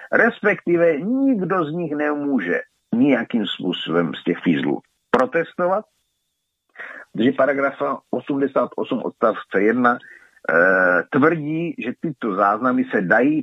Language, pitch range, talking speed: Czech, 120-175 Hz, 105 wpm